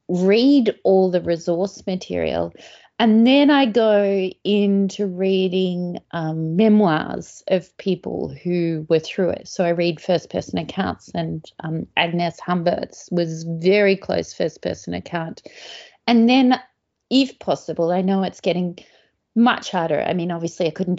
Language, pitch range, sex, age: English, 165-205 Hz, female, 30-49